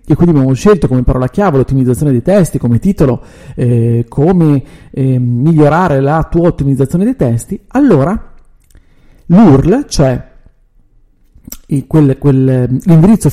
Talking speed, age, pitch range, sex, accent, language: 115 wpm, 40-59, 130-190 Hz, male, native, Italian